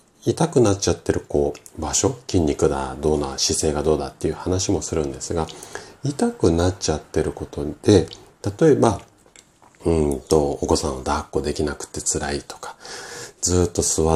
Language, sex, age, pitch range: Japanese, male, 40-59, 75-100 Hz